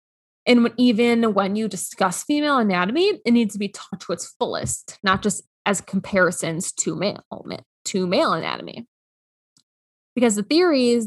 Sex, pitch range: female, 185-230 Hz